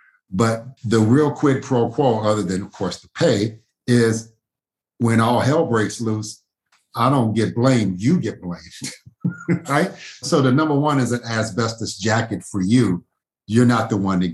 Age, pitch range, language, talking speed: 50-69, 105-130 Hz, English, 170 wpm